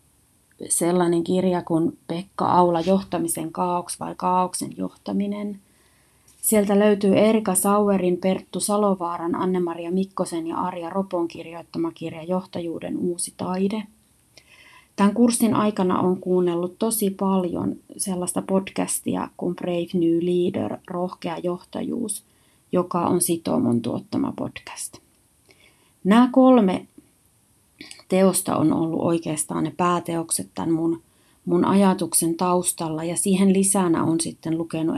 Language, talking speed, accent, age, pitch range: Finnish, 110 wpm, native, 30-49, 170-195 Hz